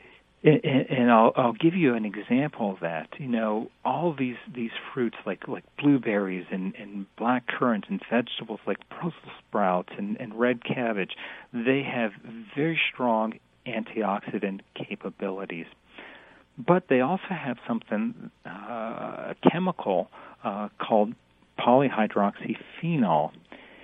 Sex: male